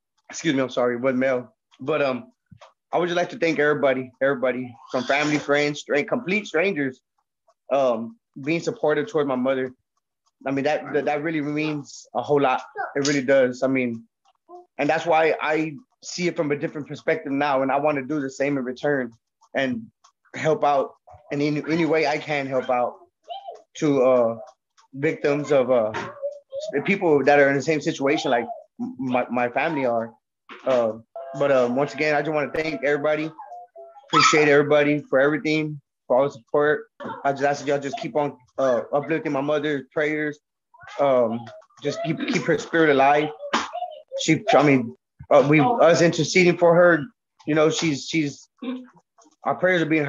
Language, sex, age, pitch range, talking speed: English, male, 20-39, 135-160 Hz, 175 wpm